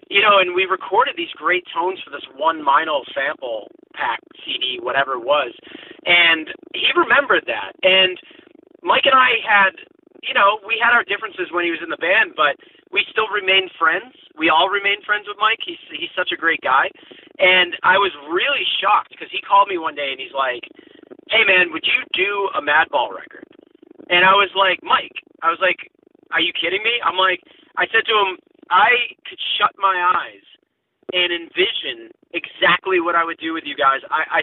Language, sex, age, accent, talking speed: English, male, 30-49, American, 195 wpm